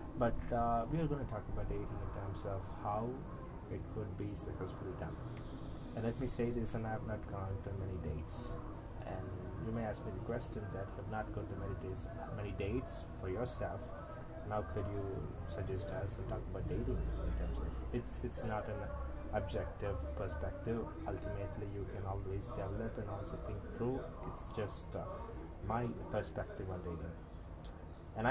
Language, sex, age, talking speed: English, male, 20-39, 180 wpm